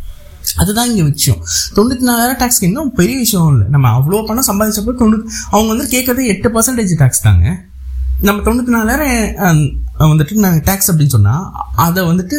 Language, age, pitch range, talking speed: Tamil, 20-39, 135-225 Hz, 155 wpm